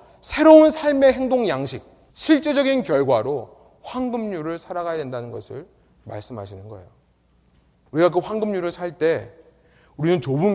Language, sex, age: Korean, male, 30-49